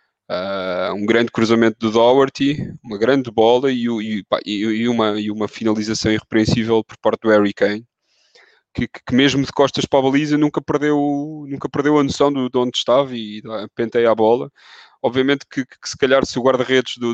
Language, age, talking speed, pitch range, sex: Portuguese, 20-39, 195 wpm, 110-125 Hz, male